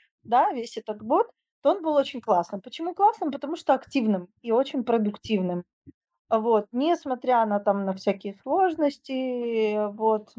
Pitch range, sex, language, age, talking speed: 205-250 Hz, female, Russian, 20-39, 145 wpm